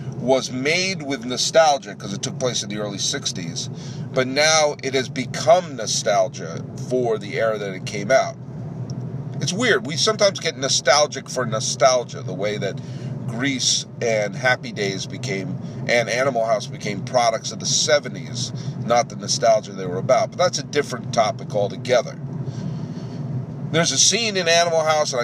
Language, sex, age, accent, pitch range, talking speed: English, male, 40-59, American, 125-145 Hz, 160 wpm